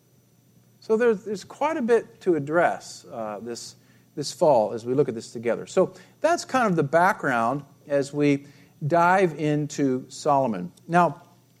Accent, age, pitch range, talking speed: American, 50-69, 135-190 Hz, 155 wpm